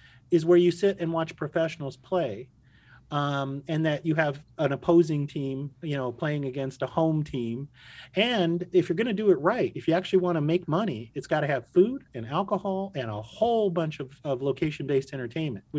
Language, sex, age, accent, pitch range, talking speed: English, male, 30-49, American, 130-165 Hz, 190 wpm